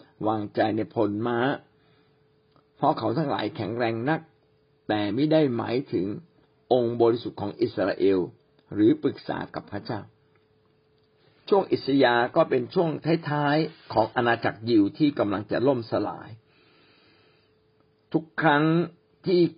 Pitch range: 115-155 Hz